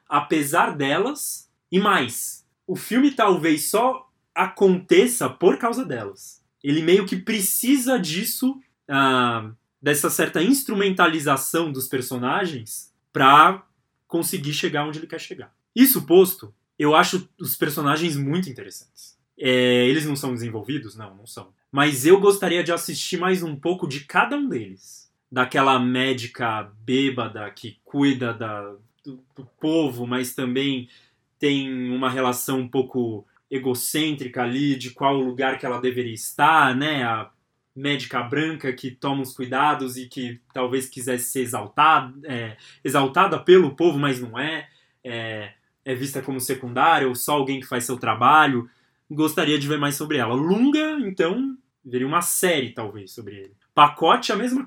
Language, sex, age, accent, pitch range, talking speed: Portuguese, male, 20-39, Brazilian, 125-170 Hz, 145 wpm